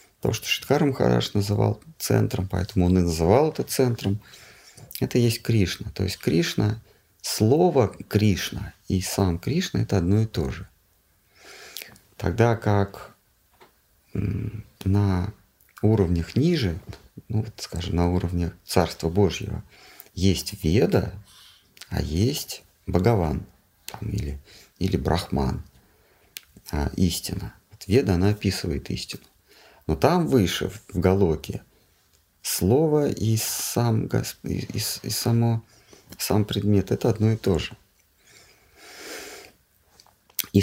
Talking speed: 105 wpm